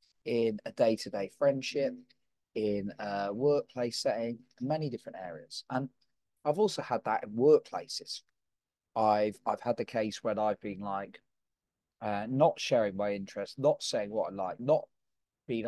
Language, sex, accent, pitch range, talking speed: English, male, British, 115-150 Hz, 150 wpm